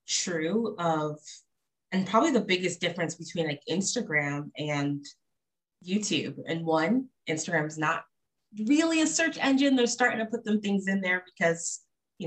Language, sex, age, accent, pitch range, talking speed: English, female, 20-39, American, 155-180 Hz, 150 wpm